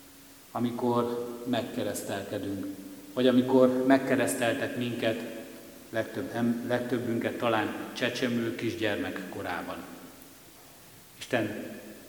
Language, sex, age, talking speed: Hungarian, male, 60-79, 60 wpm